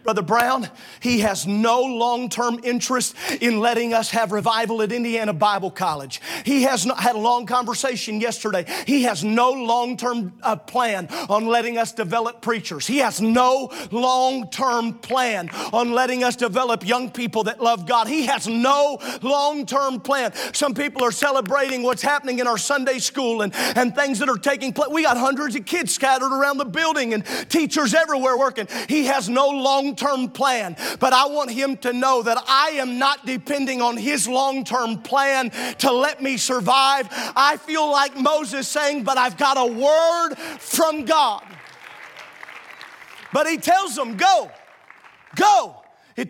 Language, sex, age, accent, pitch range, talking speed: English, male, 40-59, American, 230-275 Hz, 165 wpm